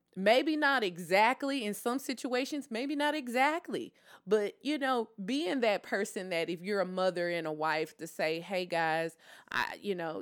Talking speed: 175 wpm